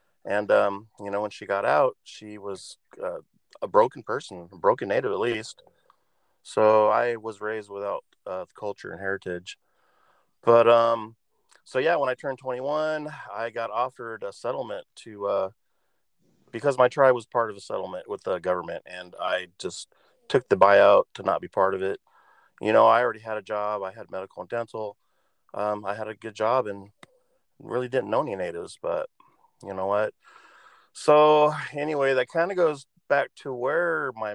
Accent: American